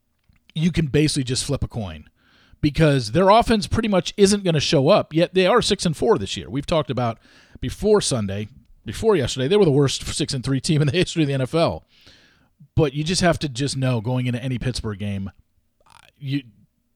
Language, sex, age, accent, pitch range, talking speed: English, male, 40-59, American, 125-165 Hz, 210 wpm